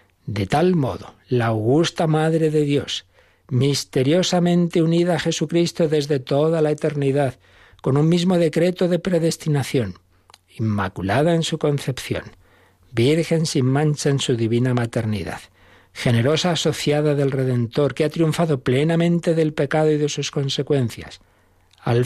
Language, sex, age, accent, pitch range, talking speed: Spanish, male, 60-79, Spanish, 105-160 Hz, 130 wpm